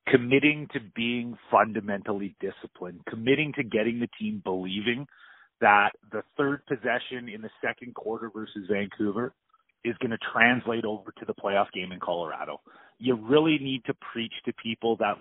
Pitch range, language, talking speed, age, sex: 115-160 Hz, English, 160 wpm, 30-49, male